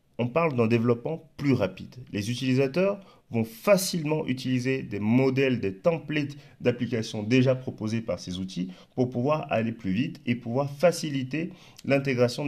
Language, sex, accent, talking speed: French, male, French, 145 wpm